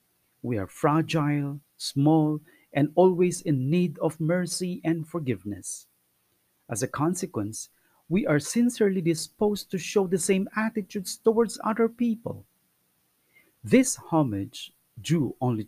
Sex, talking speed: male, 120 wpm